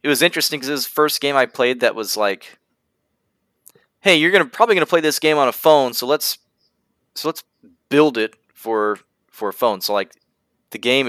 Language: English